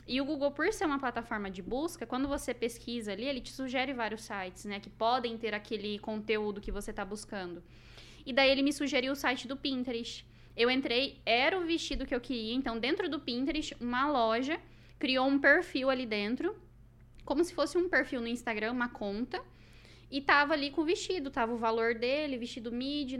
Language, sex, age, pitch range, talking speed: Portuguese, female, 10-29, 225-285 Hz, 200 wpm